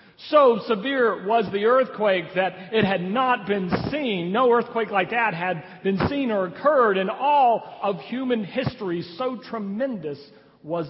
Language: English